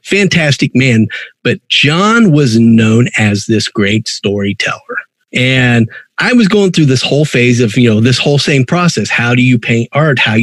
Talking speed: 180 wpm